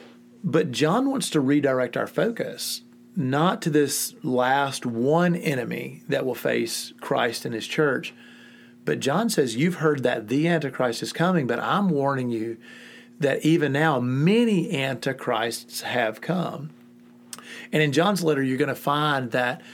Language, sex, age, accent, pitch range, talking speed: English, male, 40-59, American, 125-160 Hz, 150 wpm